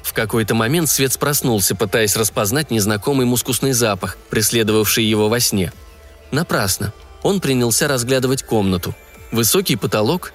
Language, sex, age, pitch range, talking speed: Russian, male, 20-39, 105-150 Hz, 120 wpm